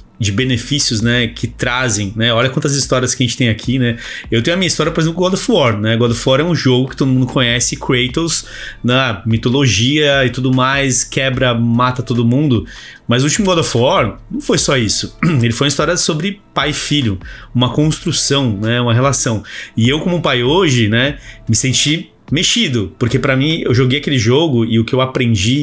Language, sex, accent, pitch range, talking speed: Portuguese, male, Brazilian, 120-150 Hz, 215 wpm